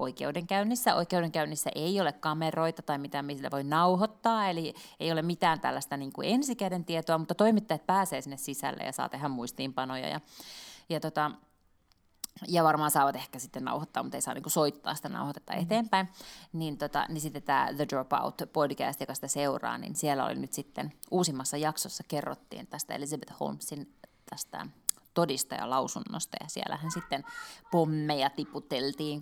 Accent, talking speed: native, 155 wpm